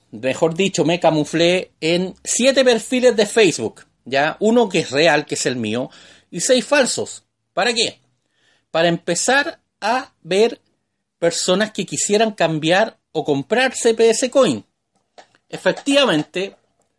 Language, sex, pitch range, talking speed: Spanish, male, 150-215 Hz, 125 wpm